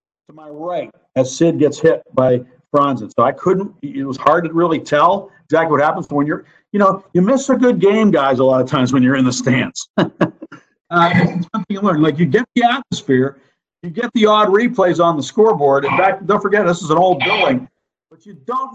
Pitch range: 125-175 Hz